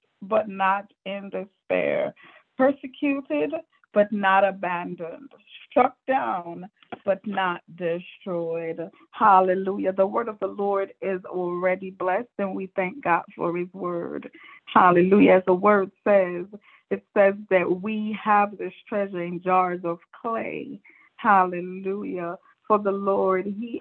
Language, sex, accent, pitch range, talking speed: English, female, American, 185-230 Hz, 125 wpm